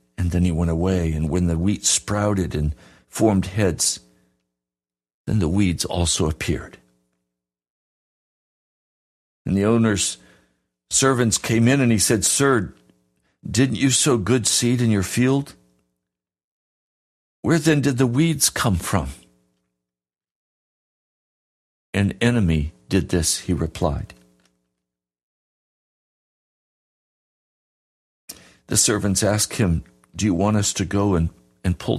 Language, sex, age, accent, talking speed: English, male, 60-79, American, 115 wpm